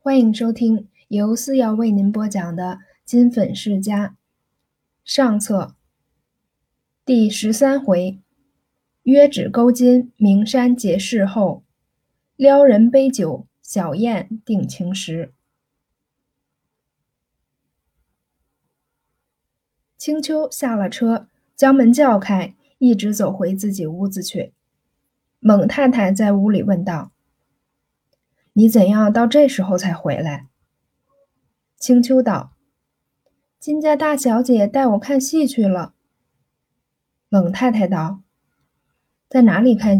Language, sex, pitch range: Chinese, female, 190-250 Hz